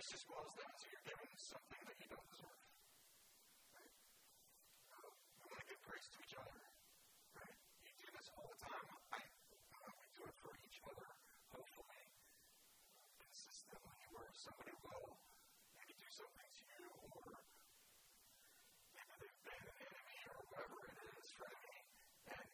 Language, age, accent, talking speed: English, 40-59, American, 170 wpm